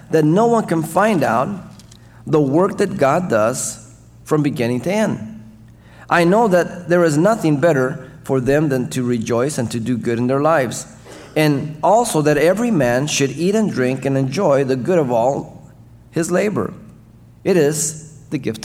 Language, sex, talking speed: English, male, 175 wpm